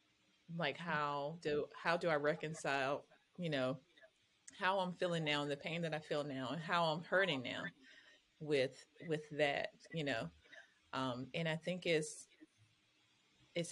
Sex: female